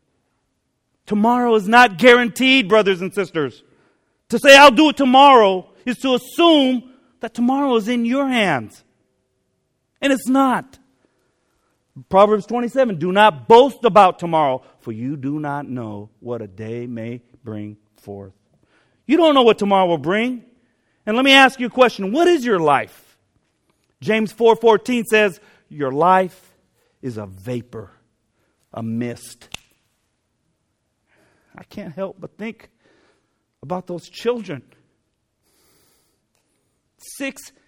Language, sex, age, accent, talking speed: English, male, 40-59, American, 125 wpm